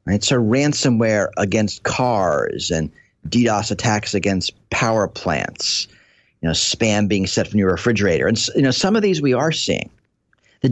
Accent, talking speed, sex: American, 160 wpm, male